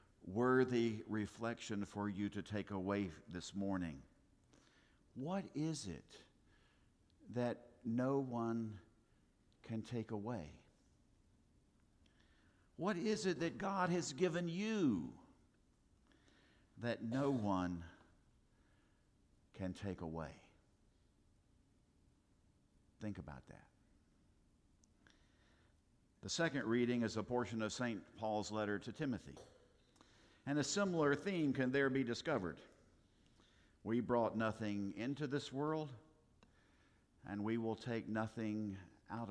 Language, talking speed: English, 100 wpm